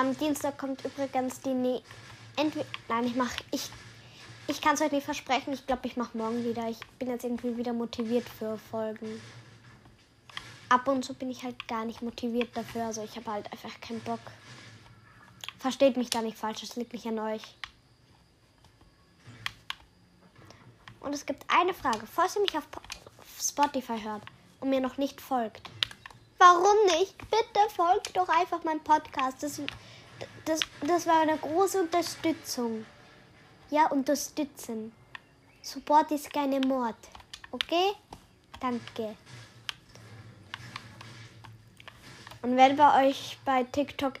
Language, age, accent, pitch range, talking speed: German, 10-29, German, 230-290 Hz, 140 wpm